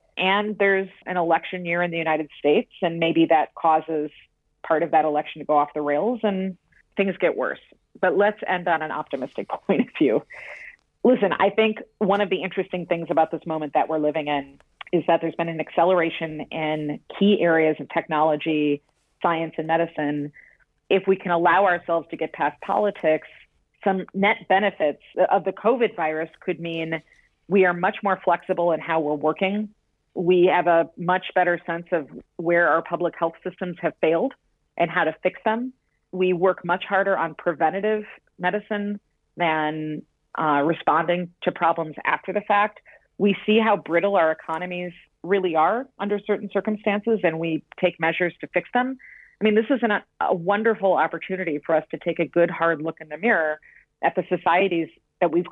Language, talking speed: English, 180 wpm